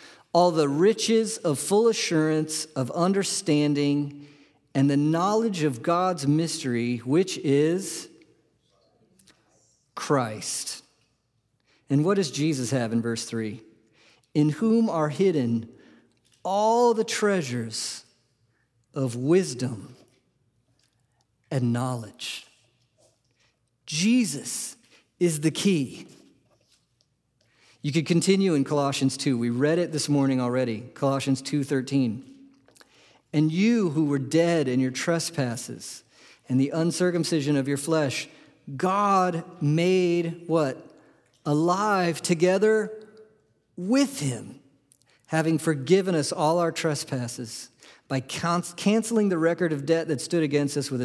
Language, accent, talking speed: English, American, 110 wpm